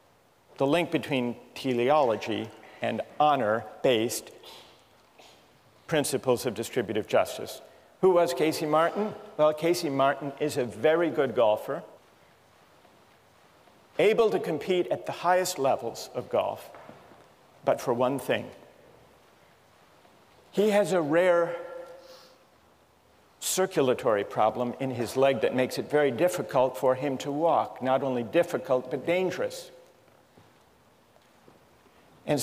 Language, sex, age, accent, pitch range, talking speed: English, male, 50-69, American, 130-175 Hz, 110 wpm